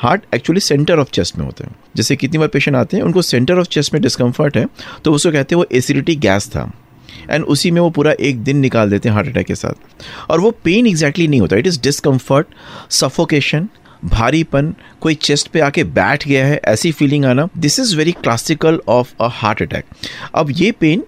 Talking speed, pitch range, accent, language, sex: 215 wpm, 120-160 Hz, native, Hindi, male